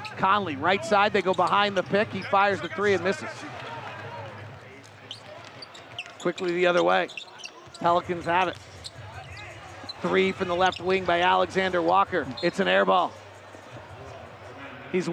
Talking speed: 135 wpm